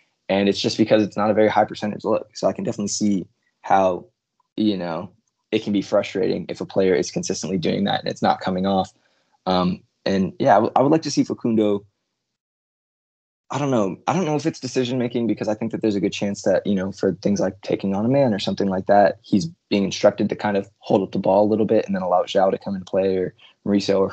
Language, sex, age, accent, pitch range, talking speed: English, male, 20-39, American, 95-115 Hz, 250 wpm